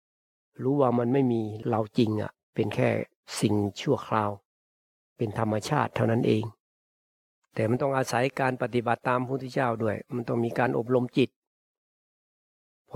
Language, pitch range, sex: Thai, 110-130 Hz, male